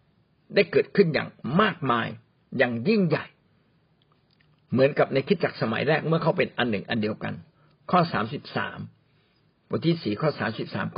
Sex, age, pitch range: male, 60-79, 135-175 Hz